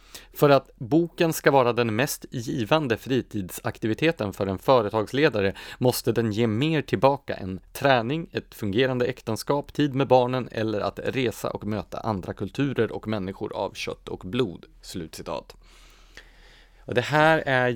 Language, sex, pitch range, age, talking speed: Swedish, male, 100-135 Hz, 30-49, 140 wpm